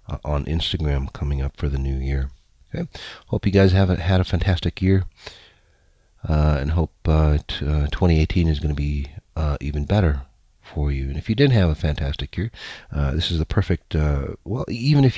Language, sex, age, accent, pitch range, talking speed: English, male, 40-59, American, 75-90 Hz, 200 wpm